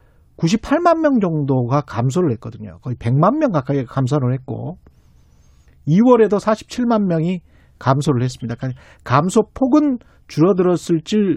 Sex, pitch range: male, 125-205 Hz